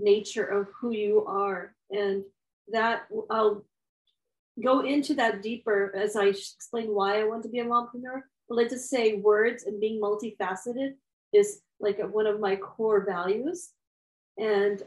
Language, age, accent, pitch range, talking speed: English, 40-59, American, 205-260 Hz, 155 wpm